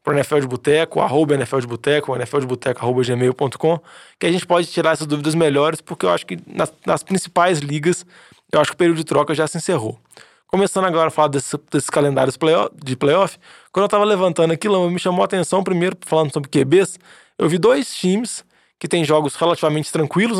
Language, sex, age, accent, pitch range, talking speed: Portuguese, male, 20-39, Brazilian, 150-200 Hz, 205 wpm